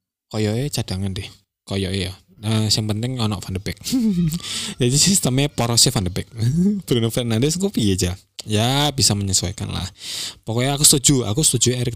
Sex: male